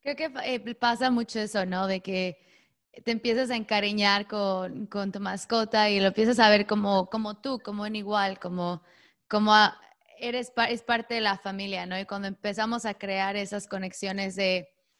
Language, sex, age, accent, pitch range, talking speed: English, female, 20-39, Mexican, 195-230 Hz, 170 wpm